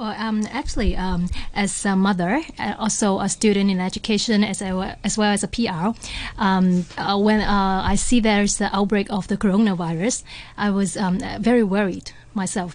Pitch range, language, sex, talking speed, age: 180-210 Hz, English, female, 170 wpm, 20-39